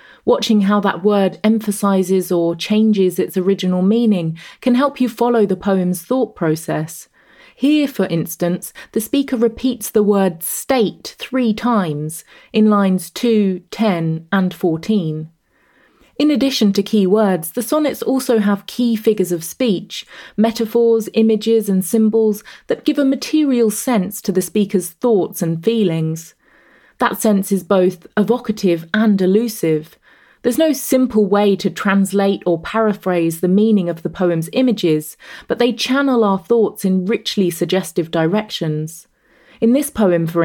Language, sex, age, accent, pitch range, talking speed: English, female, 30-49, British, 180-230 Hz, 145 wpm